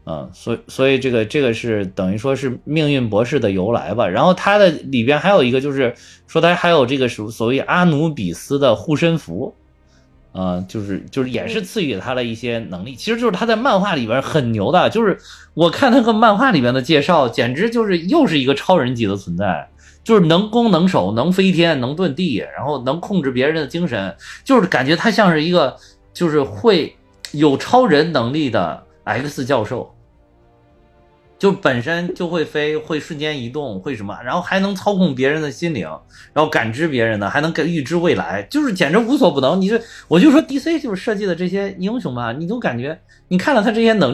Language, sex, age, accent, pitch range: Chinese, male, 20-39, native, 125-190 Hz